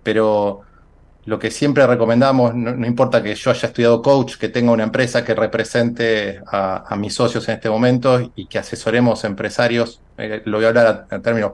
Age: 30-49